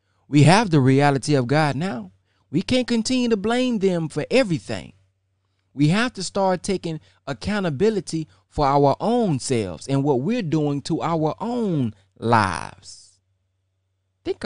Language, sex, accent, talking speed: English, male, American, 140 wpm